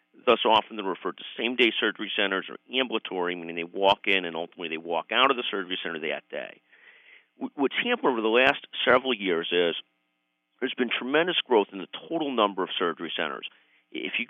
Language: English